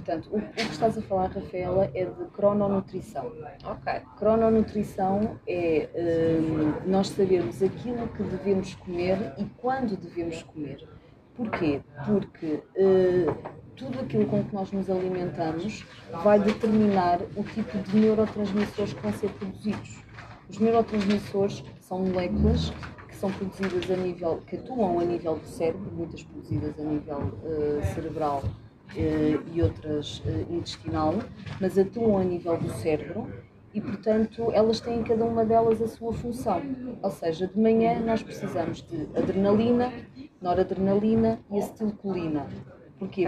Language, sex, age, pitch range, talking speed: Portuguese, female, 20-39, 165-215 Hz, 135 wpm